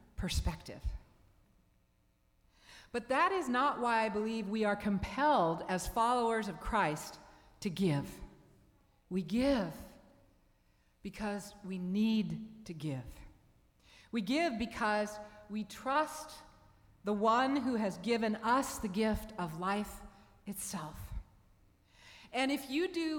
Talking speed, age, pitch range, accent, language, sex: 115 wpm, 50-69, 190-250 Hz, American, English, female